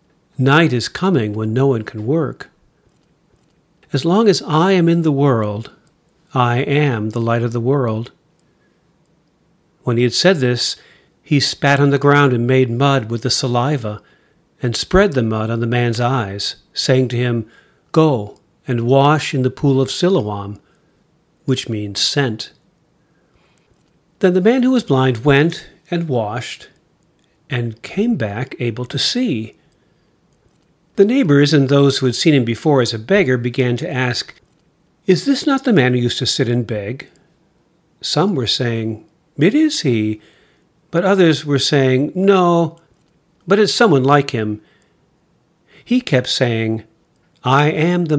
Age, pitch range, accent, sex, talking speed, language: 50-69, 120-170 Hz, American, male, 155 wpm, English